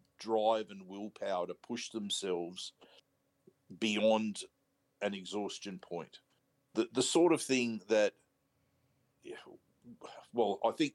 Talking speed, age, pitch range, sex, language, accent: 105 wpm, 50-69, 95-115 Hz, male, English, Australian